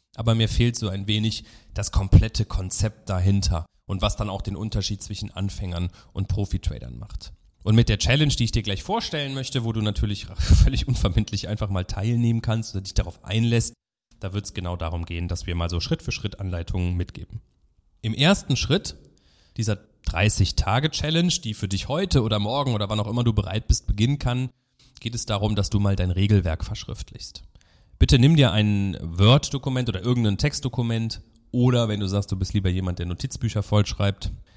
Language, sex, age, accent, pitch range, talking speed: German, male, 30-49, German, 95-115 Hz, 180 wpm